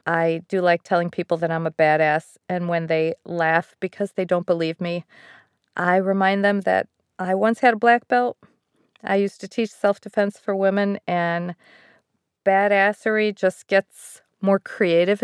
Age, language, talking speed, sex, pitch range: 40-59, English, 160 wpm, female, 170-205 Hz